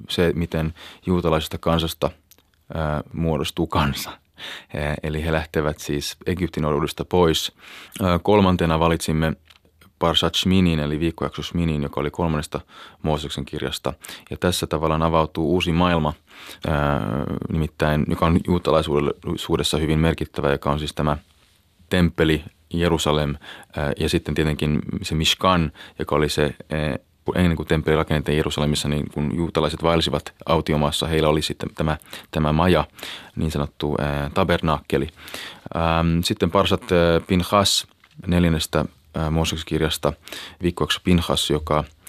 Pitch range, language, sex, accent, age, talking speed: 75-85 Hz, Finnish, male, native, 20-39, 120 wpm